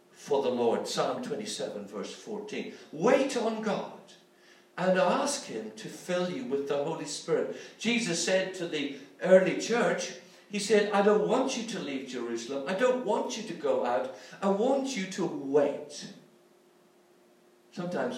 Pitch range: 140-215 Hz